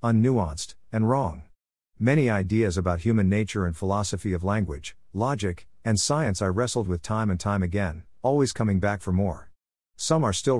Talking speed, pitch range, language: 170 wpm, 90-115 Hz, English